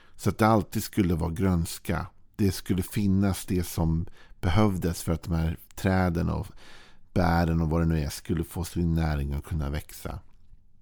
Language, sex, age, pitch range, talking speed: Swedish, male, 50-69, 80-100 Hz, 175 wpm